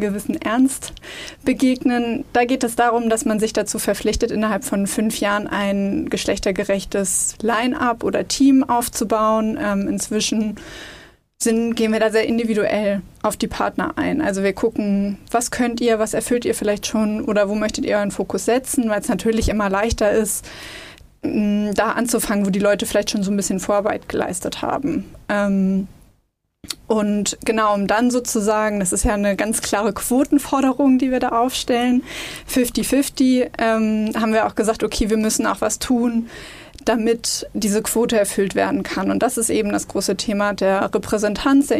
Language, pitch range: German, 210-240 Hz